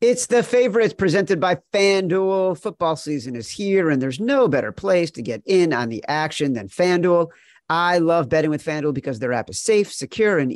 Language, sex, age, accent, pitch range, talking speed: English, male, 40-59, American, 140-180 Hz, 200 wpm